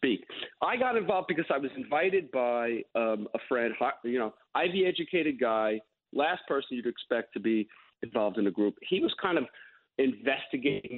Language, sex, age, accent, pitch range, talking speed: English, male, 50-69, American, 120-165 Hz, 170 wpm